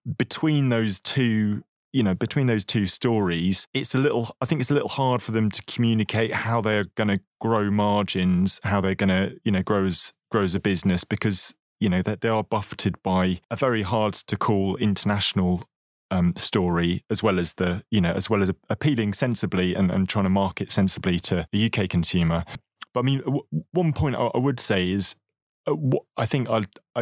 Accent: British